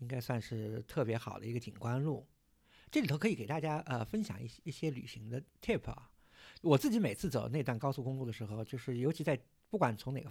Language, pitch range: Chinese, 120-170 Hz